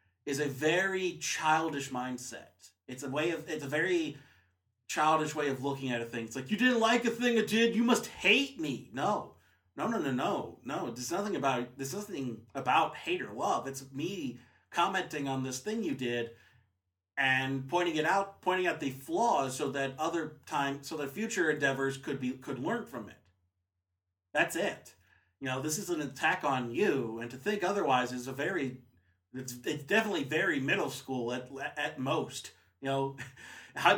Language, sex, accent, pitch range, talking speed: English, male, American, 120-165 Hz, 185 wpm